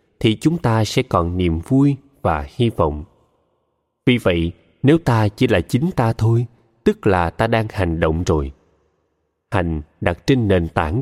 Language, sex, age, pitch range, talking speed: Vietnamese, male, 20-39, 95-140 Hz, 170 wpm